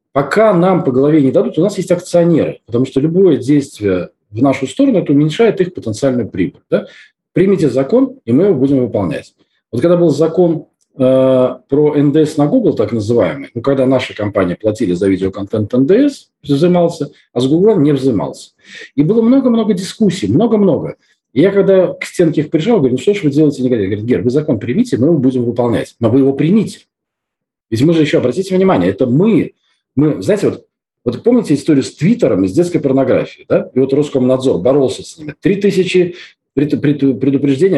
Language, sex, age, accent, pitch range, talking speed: Russian, male, 40-59, native, 135-180 Hz, 185 wpm